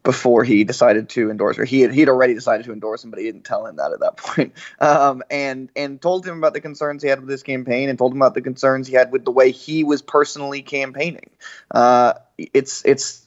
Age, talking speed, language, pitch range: 20-39, 245 wpm, English, 125-155 Hz